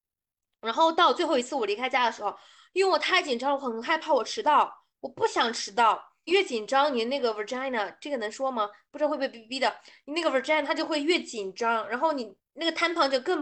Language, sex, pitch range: Chinese, female, 235-315 Hz